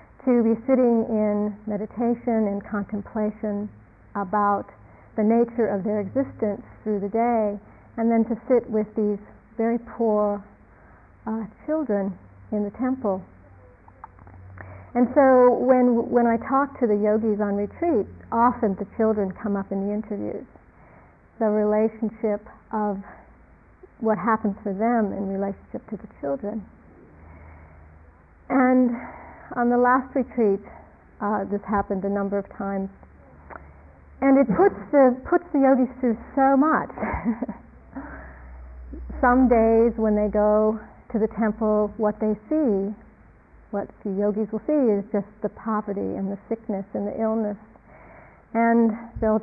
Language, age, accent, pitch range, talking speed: English, 50-69, American, 200-235 Hz, 135 wpm